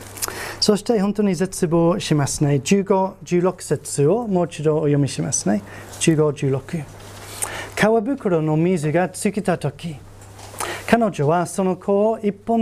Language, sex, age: Japanese, male, 30-49